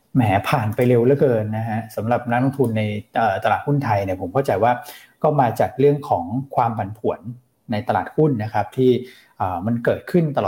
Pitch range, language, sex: 110-125 Hz, Thai, male